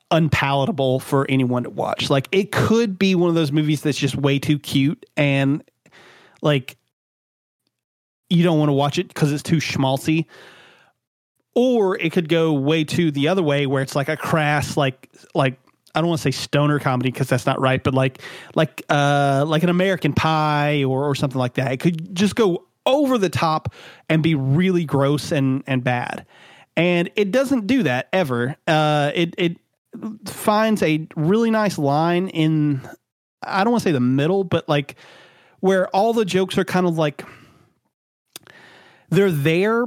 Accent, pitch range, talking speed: American, 140-190 Hz, 180 wpm